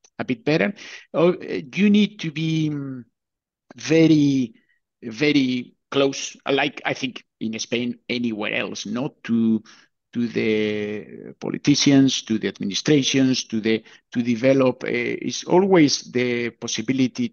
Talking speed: 120 wpm